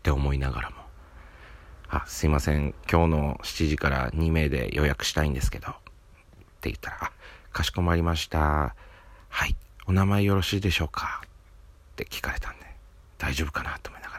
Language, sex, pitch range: Japanese, male, 75-90 Hz